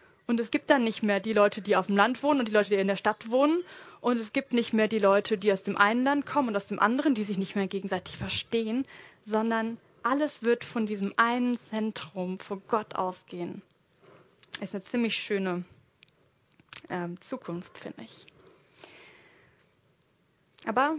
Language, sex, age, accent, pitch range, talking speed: German, female, 20-39, German, 190-235 Hz, 180 wpm